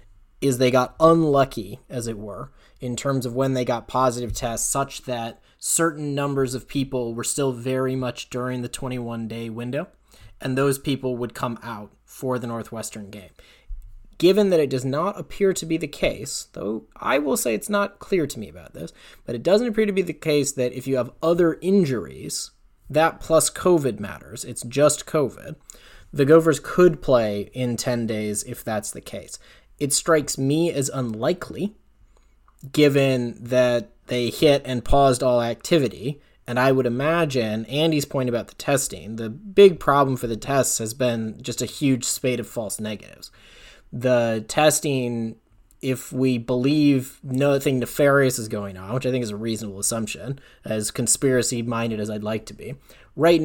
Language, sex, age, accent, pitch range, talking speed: English, male, 20-39, American, 115-145 Hz, 175 wpm